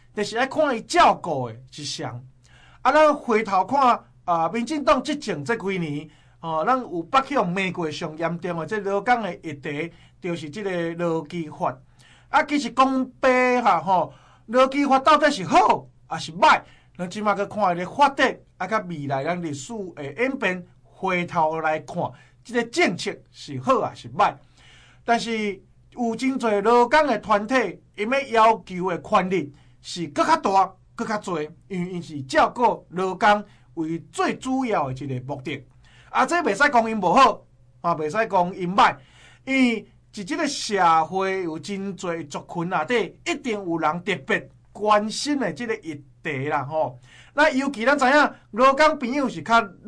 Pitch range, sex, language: 160-250 Hz, male, Chinese